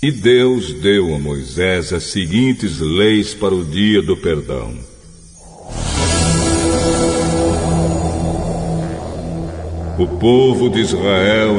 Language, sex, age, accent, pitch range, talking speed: Portuguese, male, 60-79, Brazilian, 85-115 Hz, 90 wpm